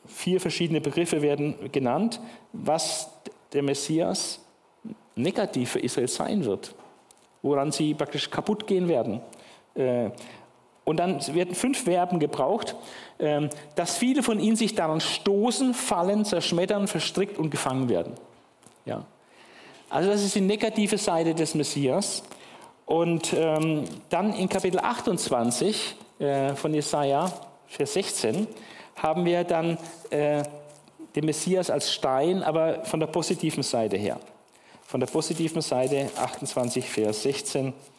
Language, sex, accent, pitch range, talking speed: German, male, German, 145-195 Hz, 120 wpm